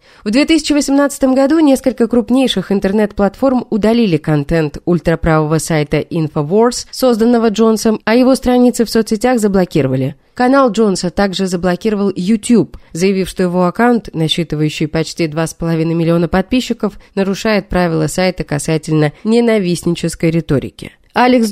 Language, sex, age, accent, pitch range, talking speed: Russian, female, 20-39, native, 170-235 Hz, 110 wpm